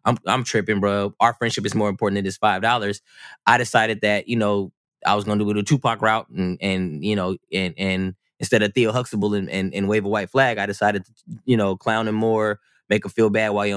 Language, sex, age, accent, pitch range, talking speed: English, male, 20-39, American, 100-125 Hz, 250 wpm